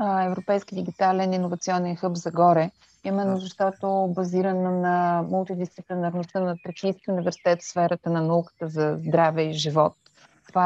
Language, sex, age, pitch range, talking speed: Bulgarian, female, 30-49, 175-200 Hz, 135 wpm